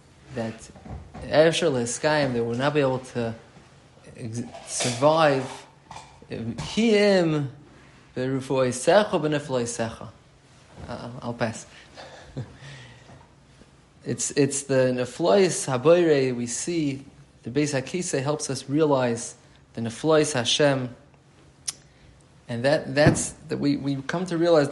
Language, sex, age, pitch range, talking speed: English, male, 30-49, 125-155 Hz, 85 wpm